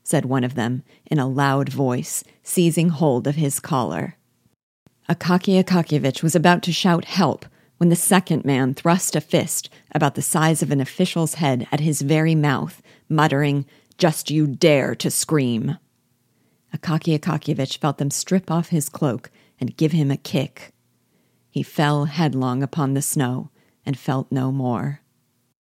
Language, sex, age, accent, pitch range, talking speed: English, female, 40-59, American, 135-165 Hz, 155 wpm